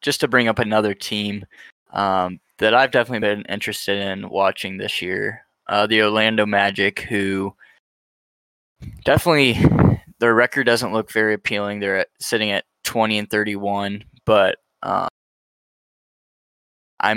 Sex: male